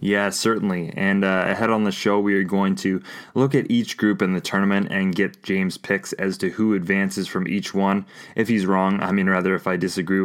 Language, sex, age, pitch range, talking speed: English, male, 20-39, 95-105 Hz, 230 wpm